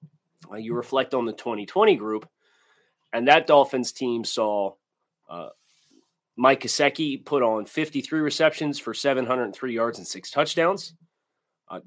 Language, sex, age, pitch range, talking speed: English, male, 30-49, 115-160 Hz, 130 wpm